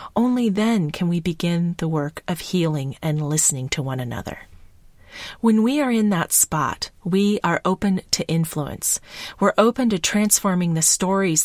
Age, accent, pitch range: 40-59, American, 155-210 Hz